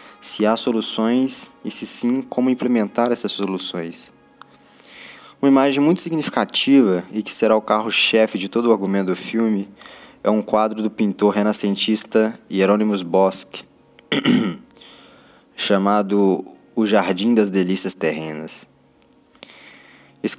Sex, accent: male, Brazilian